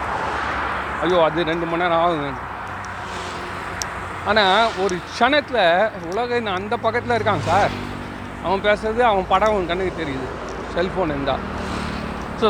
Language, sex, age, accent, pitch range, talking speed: Tamil, male, 40-59, native, 160-210 Hz, 105 wpm